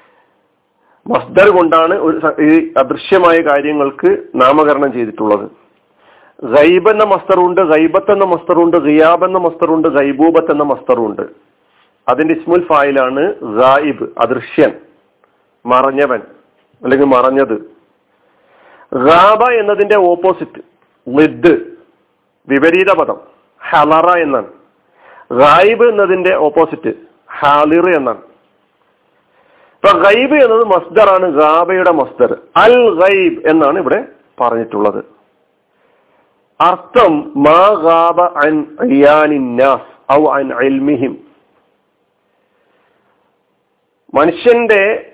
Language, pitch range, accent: Malayalam, 145-215 Hz, native